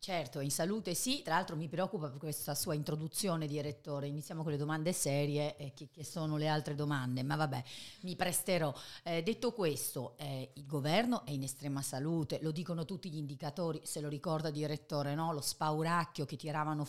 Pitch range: 135-160 Hz